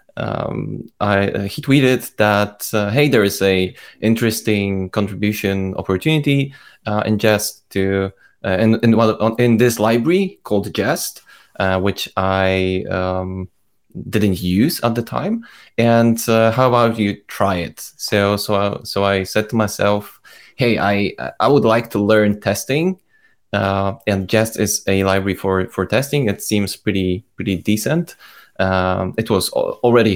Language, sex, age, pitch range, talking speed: English, male, 20-39, 95-110 Hz, 150 wpm